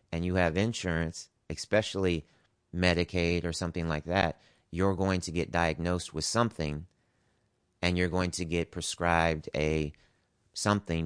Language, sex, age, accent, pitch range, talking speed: English, male, 30-49, American, 80-95 Hz, 135 wpm